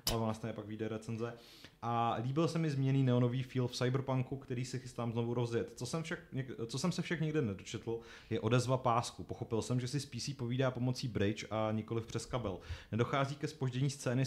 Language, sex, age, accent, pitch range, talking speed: Czech, male, 30-49, native, 110-125 Hz, 205 wpm